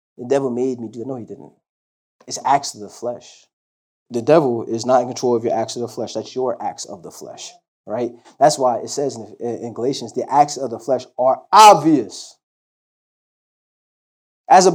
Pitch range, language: 125-190 Hz, English